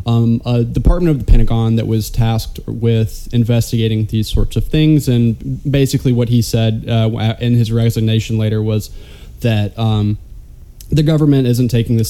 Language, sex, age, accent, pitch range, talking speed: English, male, 20-39, American, 110-120 Hz, 165 wpm